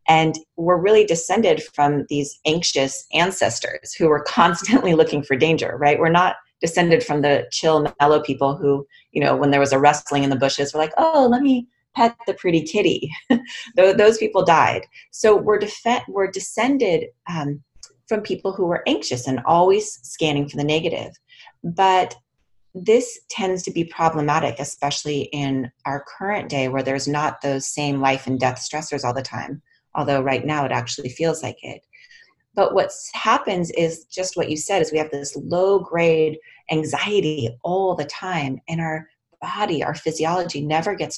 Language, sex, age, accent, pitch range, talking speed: English, female, 30-49, American, 140-180 Hz, 170 wpm